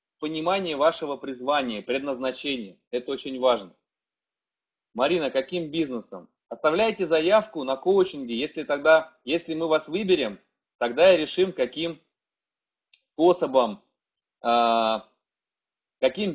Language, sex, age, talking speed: Russian, male, 30-49, 95 wpm